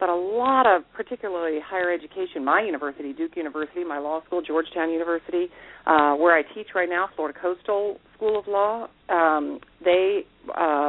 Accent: American